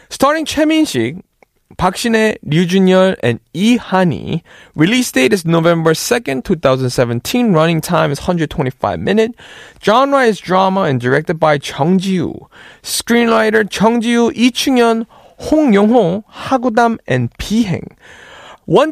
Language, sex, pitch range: Korean, male, 150-220 Hz